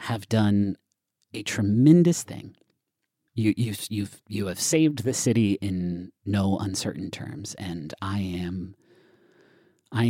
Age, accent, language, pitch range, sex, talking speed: 40-59, American, English, 95-120 Hz, male, 125 wpm